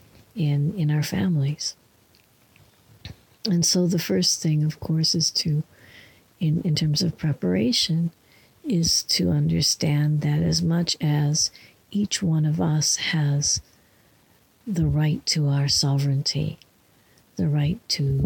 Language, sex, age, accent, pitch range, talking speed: English, female, 60-79, American, 145-170 Hz, 125 wpm